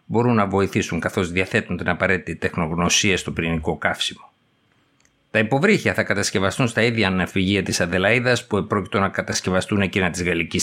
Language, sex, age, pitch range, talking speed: Greek, male, 50-69, 95-120 Hz, 150 wpm